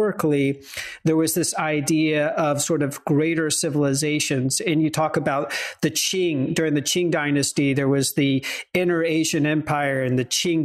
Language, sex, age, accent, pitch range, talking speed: English, male, 40-59, American, 145-170 Hz, 165 wpm